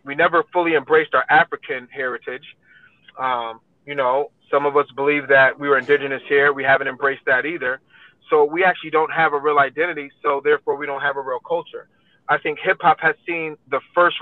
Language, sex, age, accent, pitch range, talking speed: English, male, 30-49, American, 145-175 Hz, 205 wpm